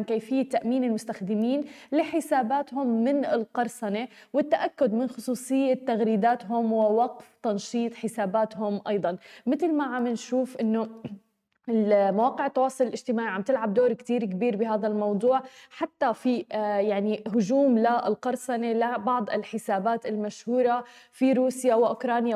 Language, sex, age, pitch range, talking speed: Arabic, female, 20-39, 215-260 Hz, 105 wpm